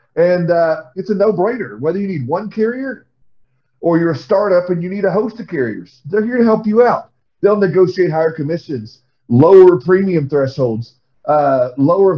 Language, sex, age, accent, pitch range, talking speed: English, male, 40-59, American, 130-185 Hz, 175 wpm